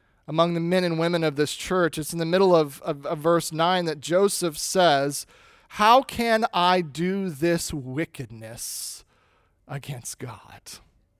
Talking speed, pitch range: 150 wpm, 125-195 Hz